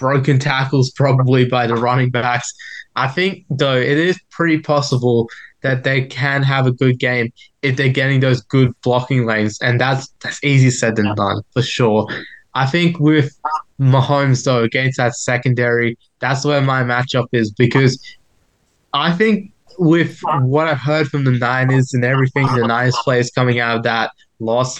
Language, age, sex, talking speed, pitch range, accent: English, 20-39, male, 170 wpm, 120-140 Hz, Australian